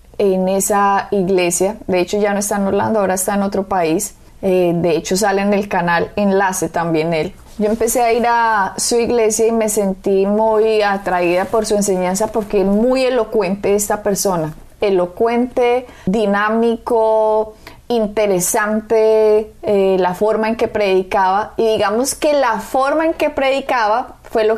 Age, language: 20-39, Spanish